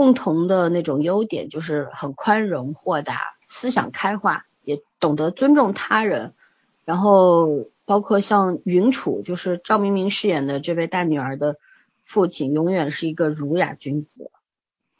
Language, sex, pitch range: Chinese, female, 150-195 Hz